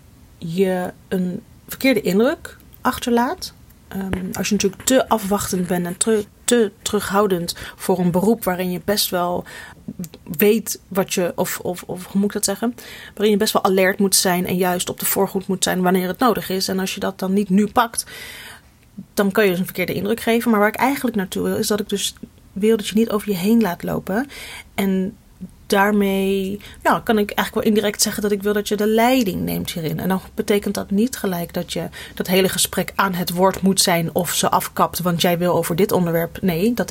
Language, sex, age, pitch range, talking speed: Dutch, female, 30-49, 185-220 Hz, 215 wpm